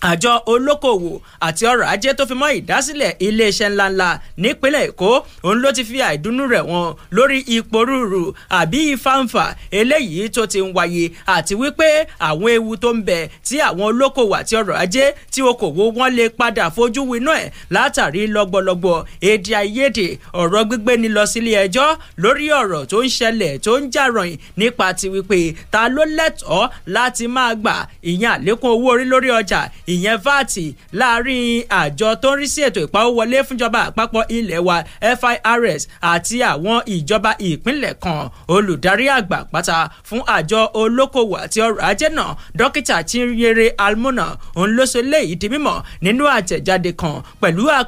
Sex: male